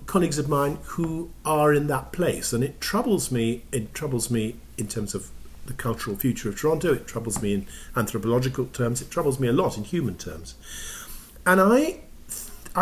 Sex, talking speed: male, 185 wpm